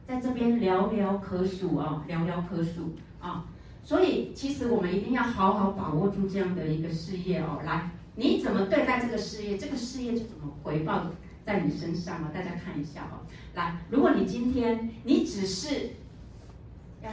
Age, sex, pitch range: 40-59, female, 175-240 Hz